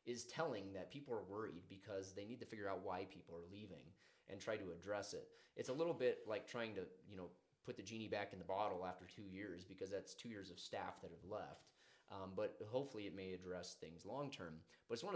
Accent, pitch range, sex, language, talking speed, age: American, 95-115 Hz, male, English, 240 wpm, 30-49